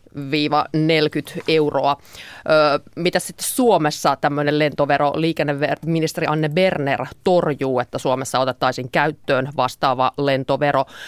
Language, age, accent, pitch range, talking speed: Finnish, 30-49, native, 135-160 Hz, 90 wpm